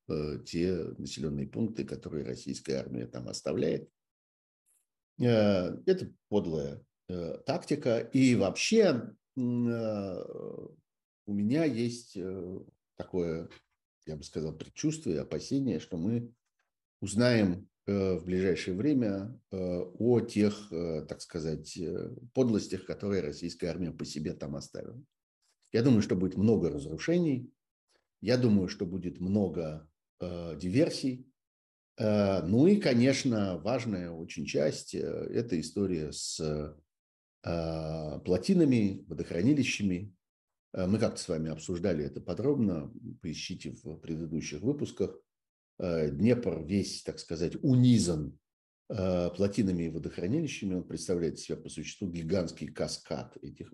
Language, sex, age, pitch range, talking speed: Russian, male, 50-69, 80-110 Hz, 100 wpm